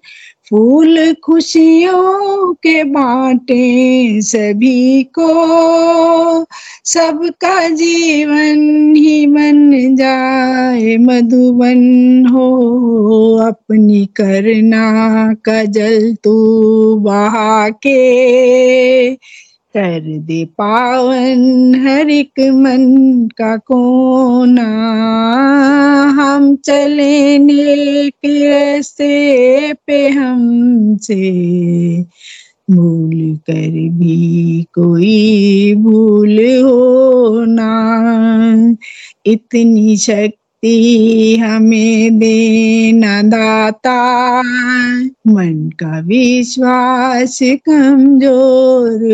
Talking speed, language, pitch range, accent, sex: 55 wpm, Hindi, 220-275 Hz, native, female